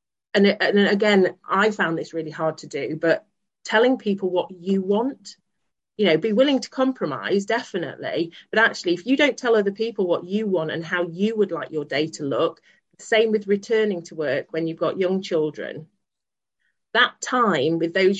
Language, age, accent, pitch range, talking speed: English, 40-59, British, 165-210 Hz, 190 wpm